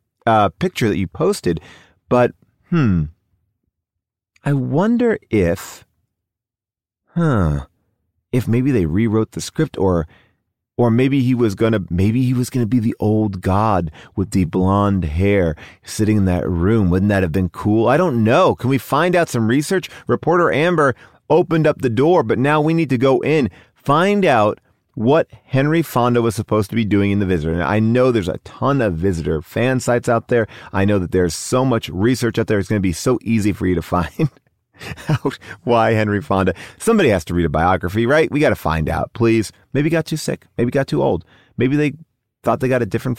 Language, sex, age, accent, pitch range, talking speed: English, male, 30-49, American, 95-135 Hz, 200 wpm